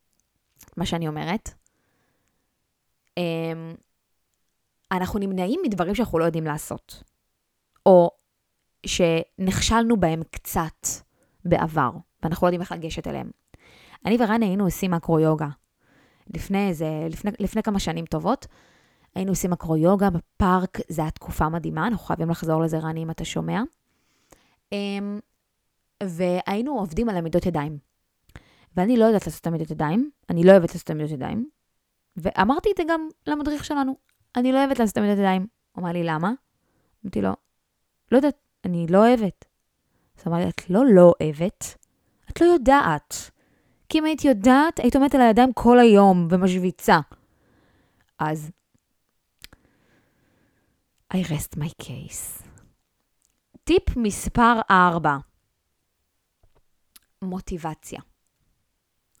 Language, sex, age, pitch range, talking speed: Hebrew, female, 20-39, 165-225 Hz, 120 wpm